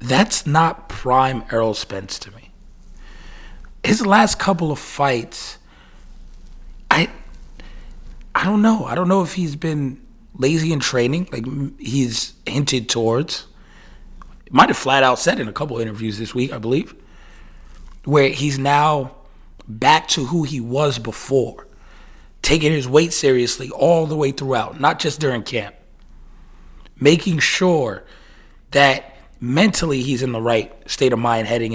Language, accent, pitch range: English, American, 120-165 Hz